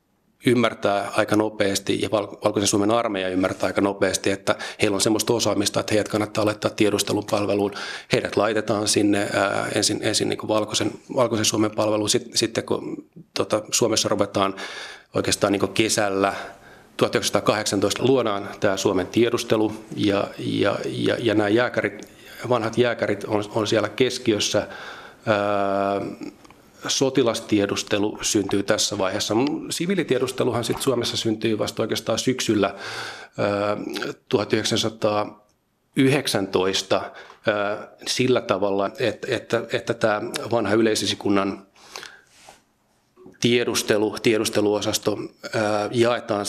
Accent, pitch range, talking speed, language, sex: native, 100-115 Hz, 105 wpm, Finnish, male